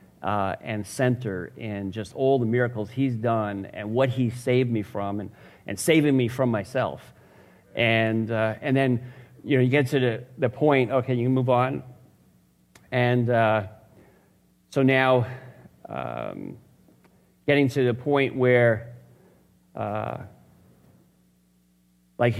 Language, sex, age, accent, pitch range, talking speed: English, male, 40-59, American, 110-135 Hz, 135 wpm